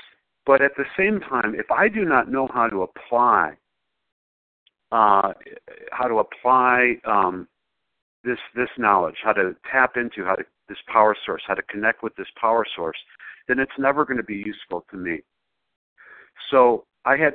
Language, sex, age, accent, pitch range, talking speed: English, male, 50-69, American, 100-130 Hz, 170 wpm